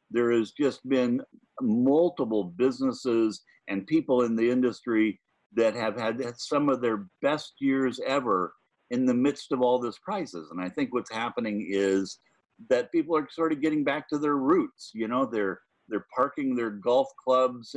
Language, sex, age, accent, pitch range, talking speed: English, male, 50-69, American, 110-140 Hz, 170 wpm